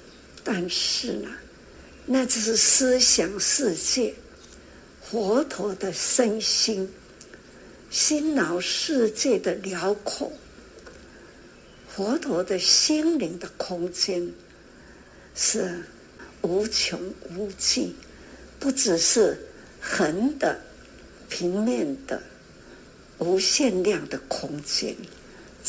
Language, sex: Chinese, female